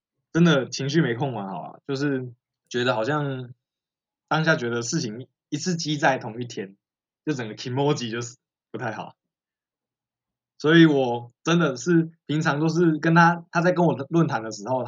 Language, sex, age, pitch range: Chinese, male, 20-39, 120-165 Hz